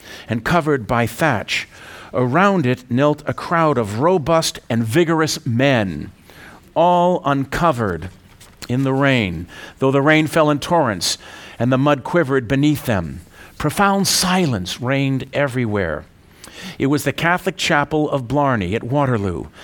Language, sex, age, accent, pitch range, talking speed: English, male, 50-69, American, 120-165 Hz, 135 wpm